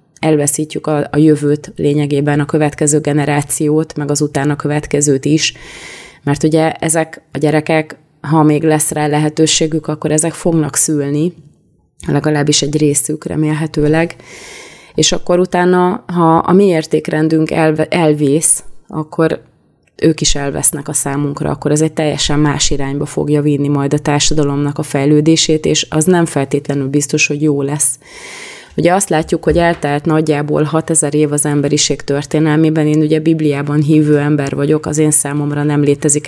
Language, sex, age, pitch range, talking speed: Hungarian, female, 20-39, 145-160 Hz, 145 wpm